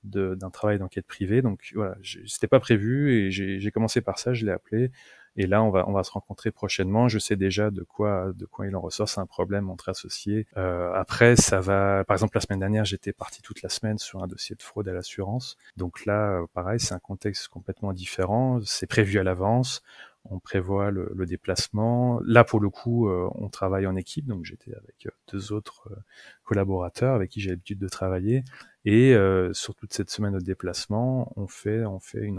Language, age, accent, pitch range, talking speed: French, 30-49, French, 95-115 Hz, 215 wpm